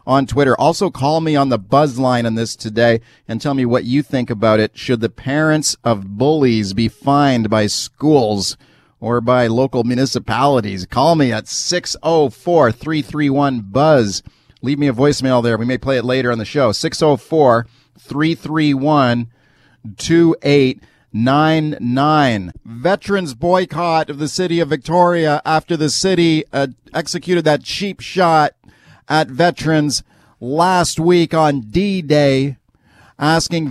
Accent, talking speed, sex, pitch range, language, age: American, 130 wpm, male, 125-155 Hz, English, 40-59